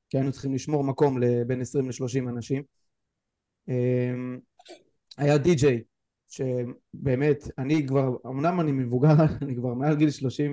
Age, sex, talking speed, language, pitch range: 20-39, male, 125 wpm, Hebrew, 125-145 Hz